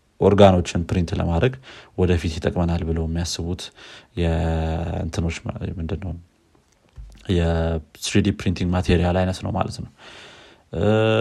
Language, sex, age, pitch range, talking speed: Amharic, male, 30-49, 85-100 Hz, 100 wpm